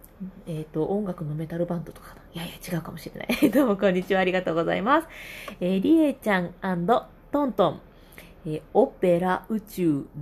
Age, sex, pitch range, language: 20-39, female, 175-245 Hz, Japanese